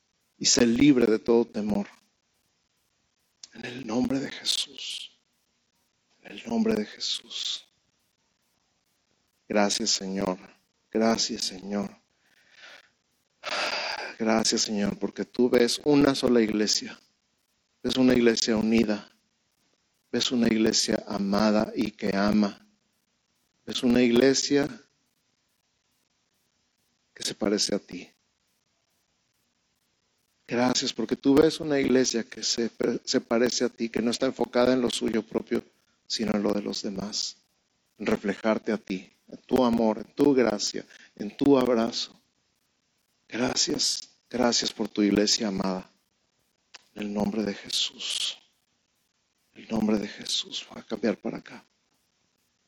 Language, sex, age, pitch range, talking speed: Spanish, male, 50-69, 105-125 Hz, 120 wpm